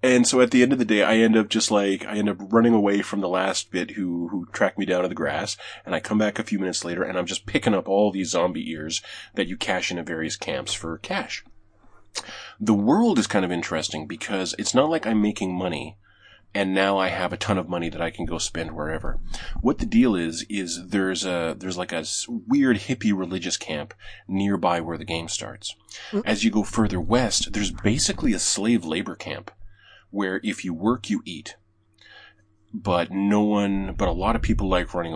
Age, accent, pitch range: 30-49, American, 85-110 Hz